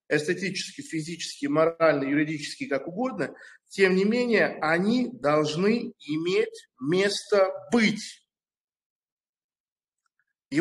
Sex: male